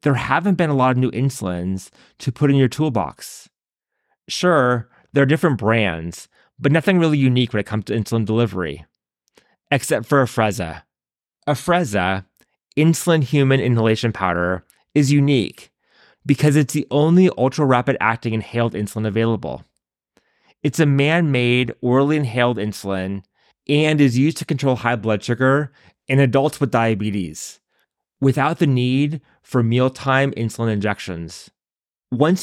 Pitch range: 105-140 Hz